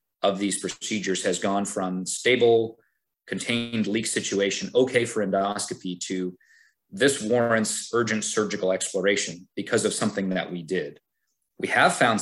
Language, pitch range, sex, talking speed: English, 100-120 Hz, male, 140 wpm